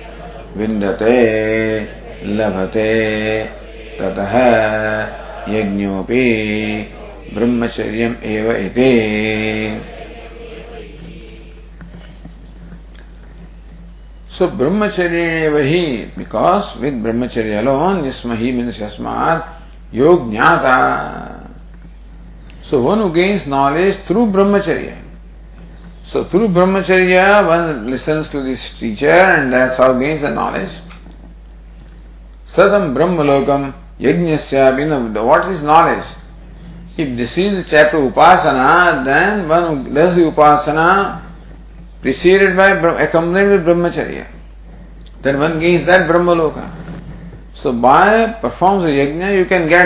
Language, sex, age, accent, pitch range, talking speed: English, male, 50-69, Indian, 115-175 Hz, 85 wpm